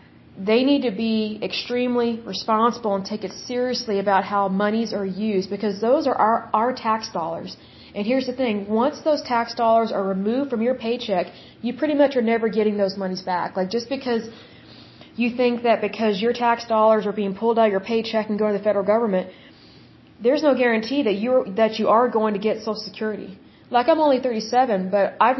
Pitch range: 200-235 Hz